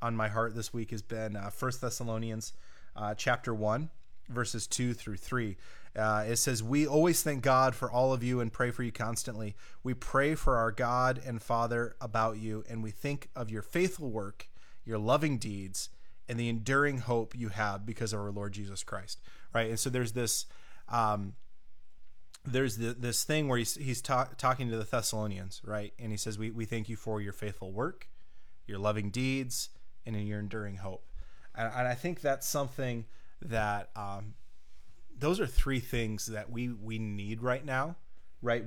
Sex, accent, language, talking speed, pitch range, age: male, American, English, 190 wpm, 105-130 Hz, 30-49